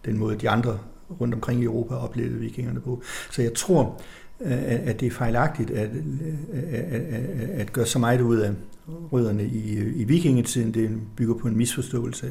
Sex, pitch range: male, 110-125 Hz